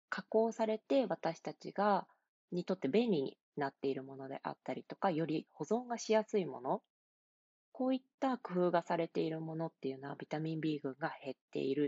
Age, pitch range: 20-39, 145-215 Hz